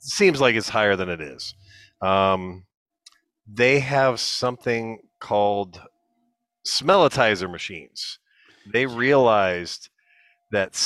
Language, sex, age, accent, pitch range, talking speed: English, male, 40-59, American, 95-120 Hz, 95 wpm